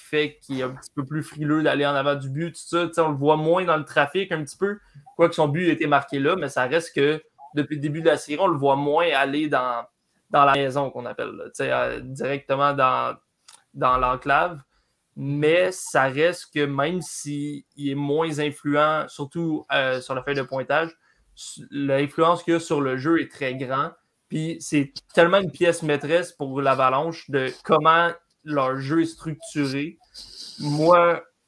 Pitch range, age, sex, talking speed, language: 140-160 Hz, 20-39, male, 195 wpm, French